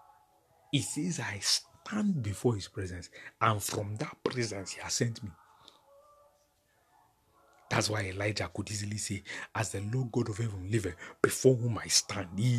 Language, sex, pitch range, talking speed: English, male, 100-160 Hz, 155 wpm